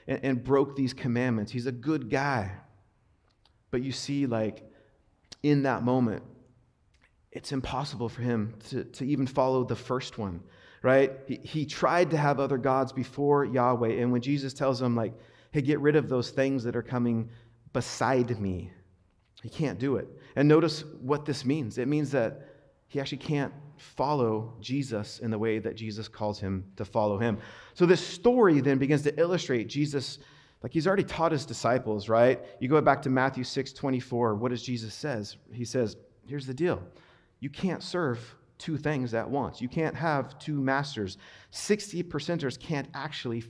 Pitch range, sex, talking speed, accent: 120-145 Hz, male, 175 wpm, American